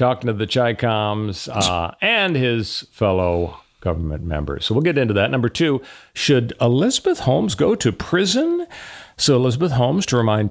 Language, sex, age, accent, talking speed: English, male, 50-69, American, 160 wpm